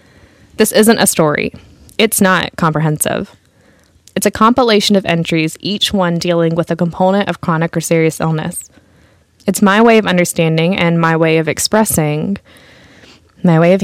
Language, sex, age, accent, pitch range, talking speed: English, female, 10-29, American, 165-215 Hz, 155 wpm